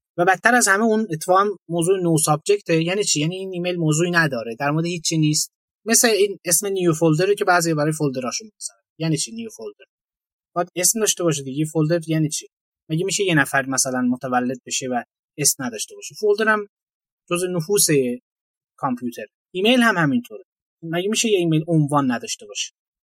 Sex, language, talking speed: male, Persian, 180 wpm